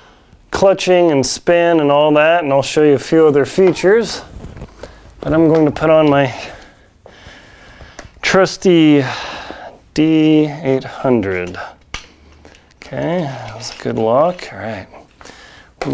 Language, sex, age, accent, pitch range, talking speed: English, male, 30-49, American, 135-165 Hz, 120 wpm